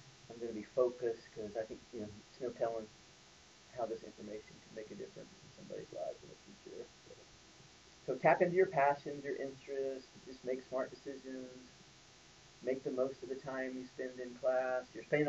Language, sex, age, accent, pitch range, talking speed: English, male, 40-59, American, 115-140 Hz, 190 wpm